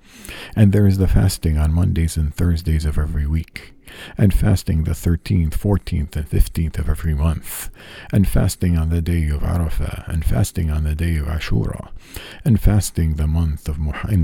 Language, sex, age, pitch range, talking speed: English, male, 50-69, 80-90 Hz, 175 wpm